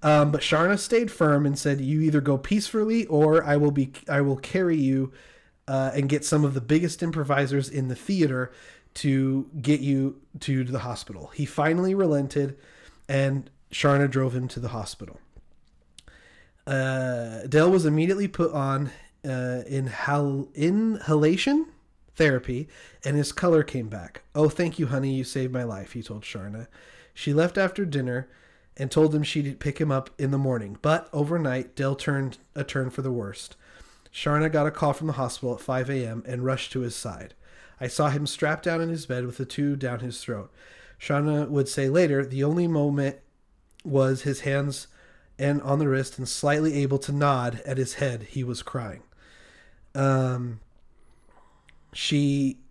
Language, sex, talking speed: English, male, 170 wpm